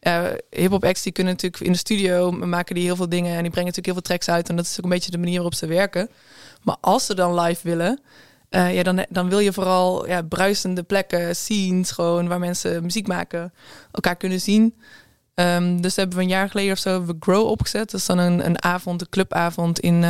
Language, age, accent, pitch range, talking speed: English, 20-39, Dutch, 175-205 Hz, 235 wpm